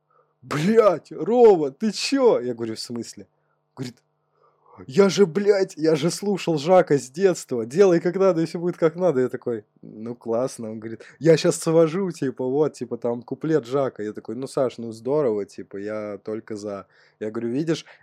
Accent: native